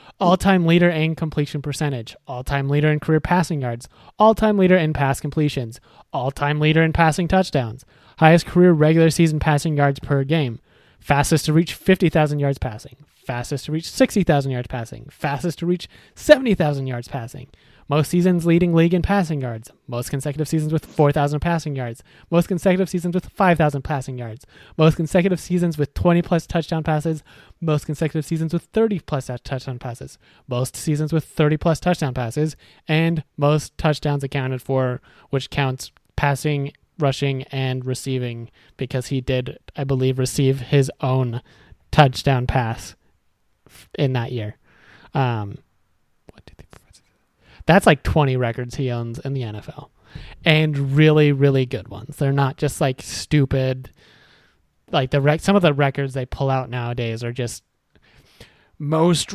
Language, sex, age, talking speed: English, male, 20-39, 150 wpm